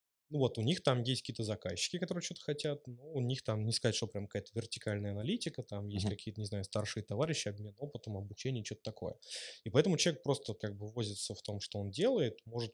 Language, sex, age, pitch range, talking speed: Russian, male, 20-39, 105-120 Hz, 220 wpm